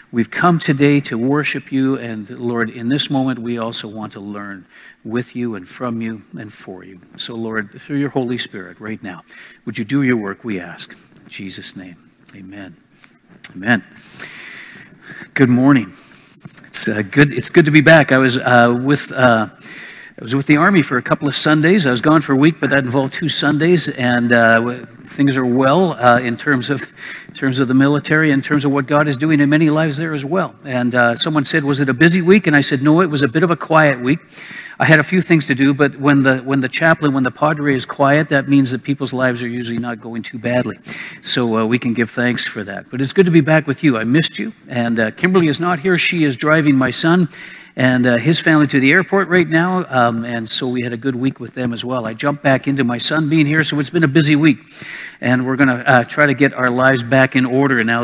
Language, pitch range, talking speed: English, 120-150 Hz, 240 wpm